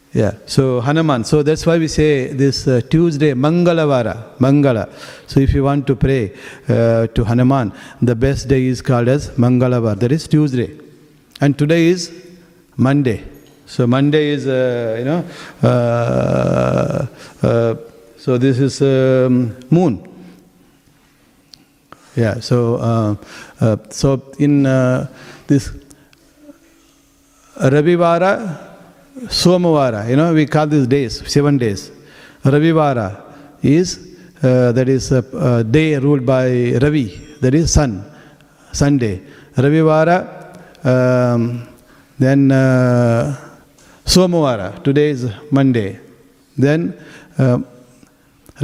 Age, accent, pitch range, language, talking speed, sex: 50-69, Indian, 125-150 Hz, English, 115 wpm, male